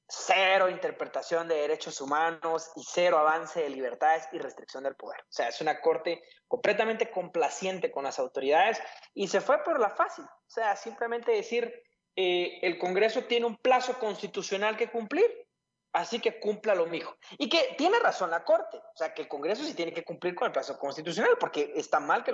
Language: Spanish